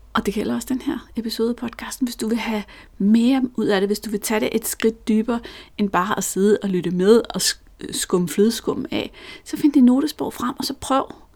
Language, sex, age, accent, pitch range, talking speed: Danish, female, 30-49, native, 185-250 Hz, 230 wpm